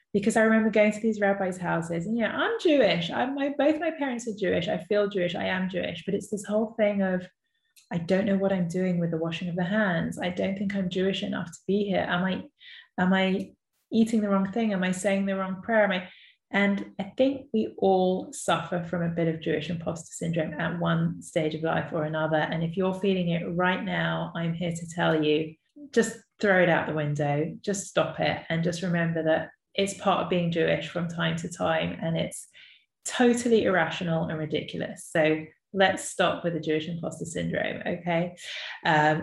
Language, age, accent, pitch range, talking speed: English, 20-39, British, 165-195 Hz, 215 wpm